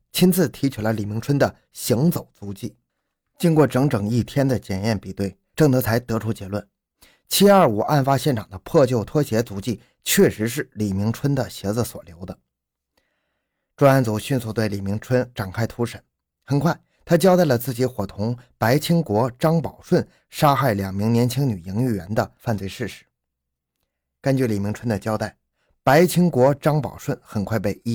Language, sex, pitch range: Chinese, male, 105-145 Hz